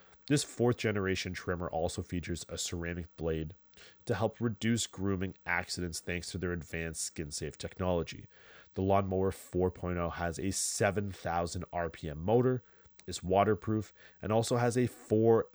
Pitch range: 85-105 Hz